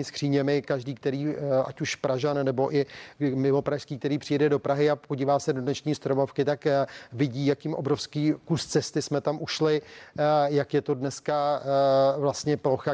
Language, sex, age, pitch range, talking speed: Czech, male, 30-49, 135-150 Hz, 160 wpm